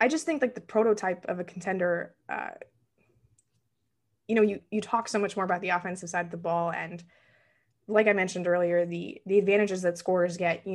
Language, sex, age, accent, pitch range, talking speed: English, female, 20-39, American, 175-210 Hz, 205 wpm